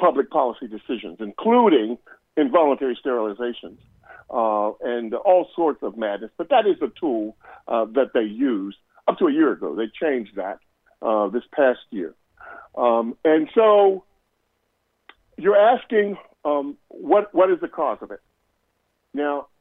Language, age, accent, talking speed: English, 50-69, American, 145 wpm